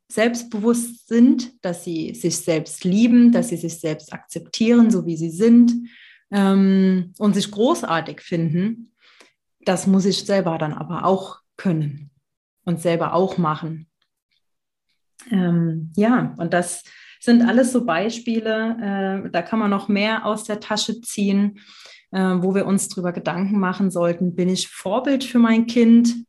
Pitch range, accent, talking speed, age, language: 175-230 Hz, German, 150 wpm, 30-49, German